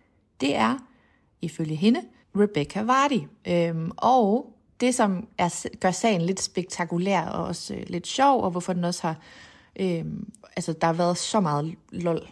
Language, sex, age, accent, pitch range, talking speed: Danish, female, 30-49, native, 175-220 Hz, 160 wpm